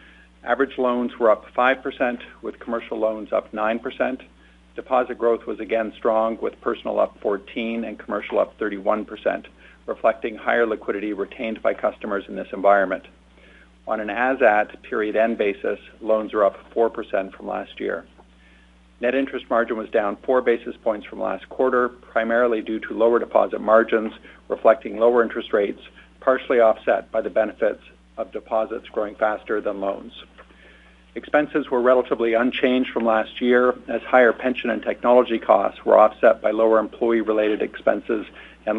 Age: 50-69